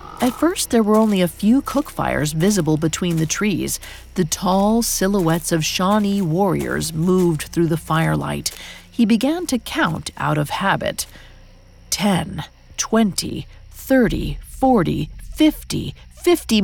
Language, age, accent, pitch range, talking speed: English, 40-59, American, 160-220 Hz, 130 wpm